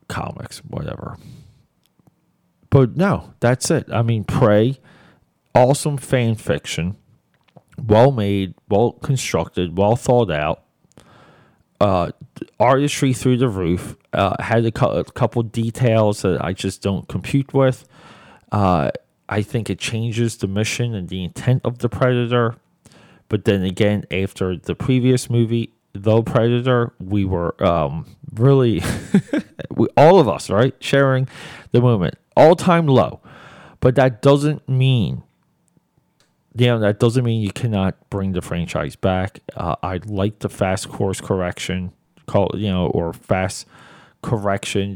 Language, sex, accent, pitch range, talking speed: English, male, American, 95-125 Hz, 135 wpm